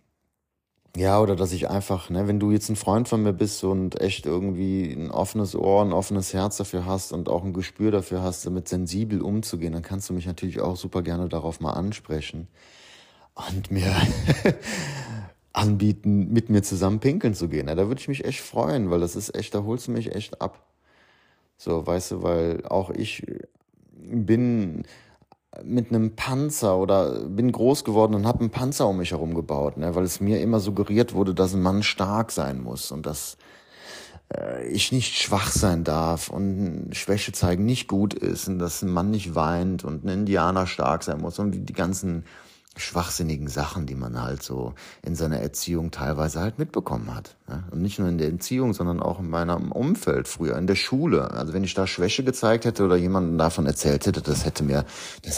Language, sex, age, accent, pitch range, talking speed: German, male, 30-49, German, 85-105 Hz, 190 wpm